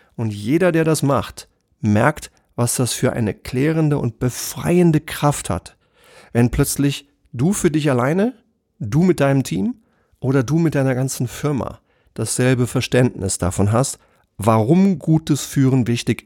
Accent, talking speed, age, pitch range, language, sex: German, 145 wpm, 40-59, 115-150 Hz, German, male